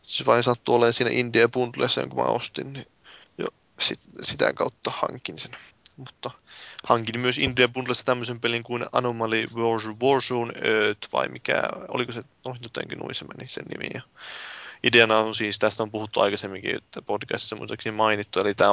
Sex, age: male, 20-39